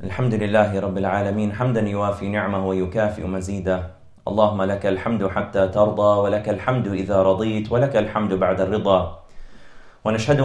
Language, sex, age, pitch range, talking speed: English, male, 30-49, 105-120 Hz, 130 wpm